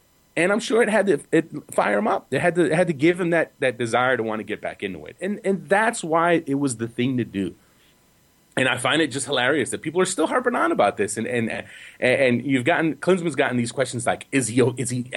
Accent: American